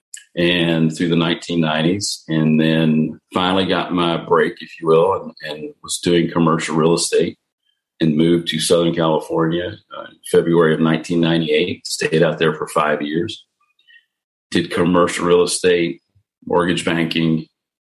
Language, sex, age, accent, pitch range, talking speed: English, male, 40-59, American, 80-95 Hz, 135 wpm